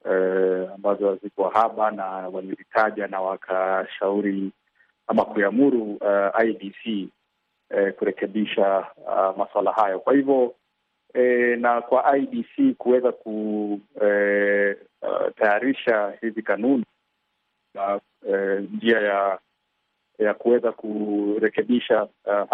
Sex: male